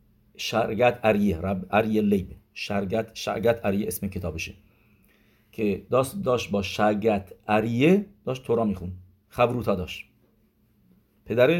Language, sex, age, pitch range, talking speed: English, male, 50-69, 100-130 Hz, 110 wpm